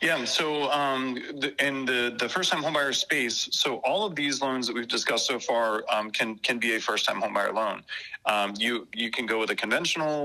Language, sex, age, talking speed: English, male, 30-49, 220 wpm